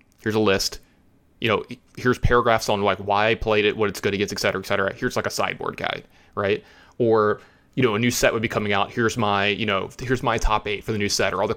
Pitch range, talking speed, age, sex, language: 100-125 Hz, 270 wpm, 20-39, male, English